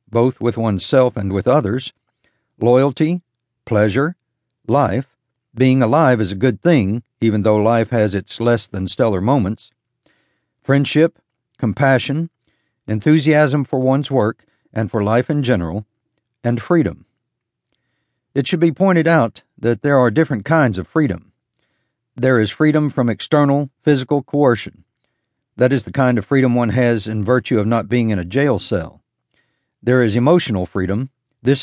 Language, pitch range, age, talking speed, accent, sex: English, 110-135 Hz, 60-79, 150 wpm, American, male